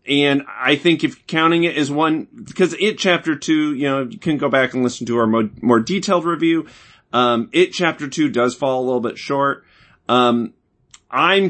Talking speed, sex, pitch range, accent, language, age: 195 wpm, male, 120-170 Hz, American, English, 30-49